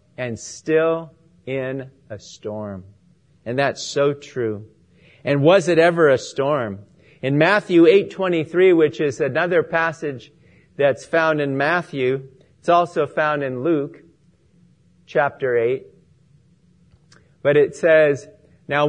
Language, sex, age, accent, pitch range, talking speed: English, male, 50-69, American, 135-180 Hz, 120 wpm